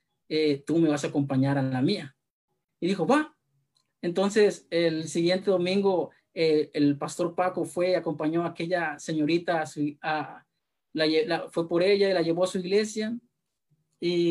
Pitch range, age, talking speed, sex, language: 160-205 Hz, 30-49, 170 wpm, male, Spanish